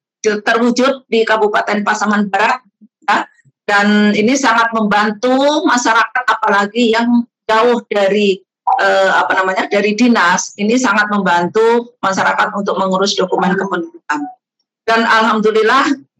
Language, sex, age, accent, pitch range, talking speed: Indonesian, female, 50-69, native, 195-240 Hz, 110 wpm